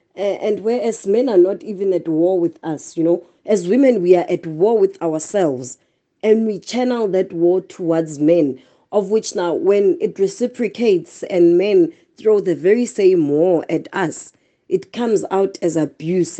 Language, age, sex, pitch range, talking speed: English, 30-49, female, 165-215 Hz, 170 wpm